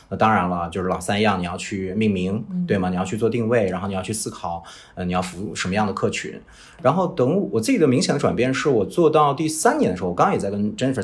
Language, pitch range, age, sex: Chinese, 100-155 Hz, 30-49, male